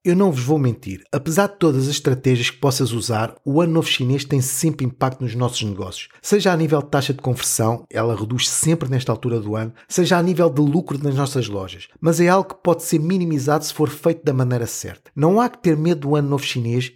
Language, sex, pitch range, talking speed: Portuguese, male, 135-170 Hz, 235 wpm